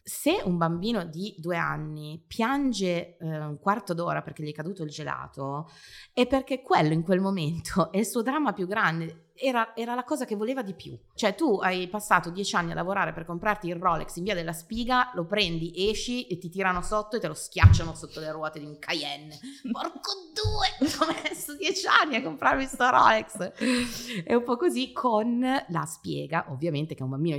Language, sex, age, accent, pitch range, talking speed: Italian, female, 30-49, native, 150-205 Hz, 200 wpm